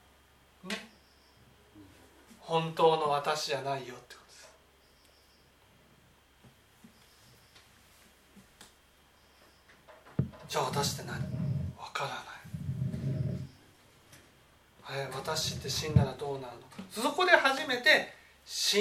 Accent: native